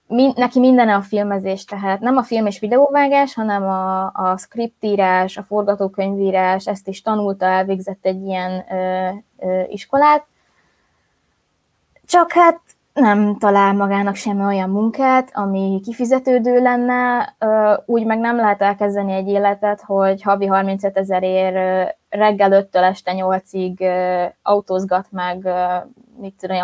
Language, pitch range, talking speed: Hungarian, 190-235 Hz, 125 wpm